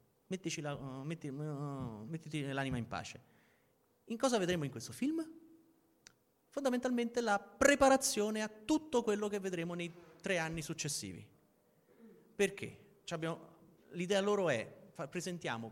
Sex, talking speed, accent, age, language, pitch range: male, 130 wpm, native, 30-49, Italian, 125-185 Hz